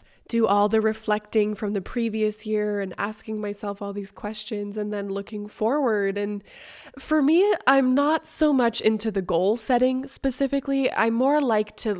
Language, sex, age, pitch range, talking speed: English, female, 20-39, 200-240 Hz, 170 wpm